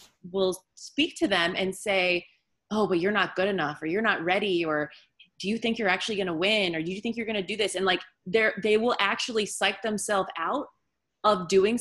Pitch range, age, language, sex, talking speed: 180-215 Hz, 30-49, English, female, 215 wpm